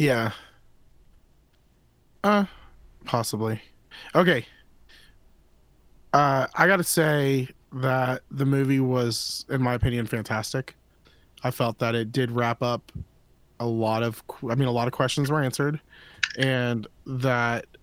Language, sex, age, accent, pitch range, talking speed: English, male, 20-39, American, 120-160 Hz, 125 wpm